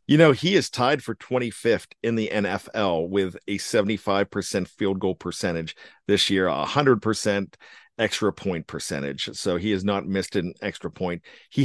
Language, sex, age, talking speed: English, male, 50-69, 170 wpm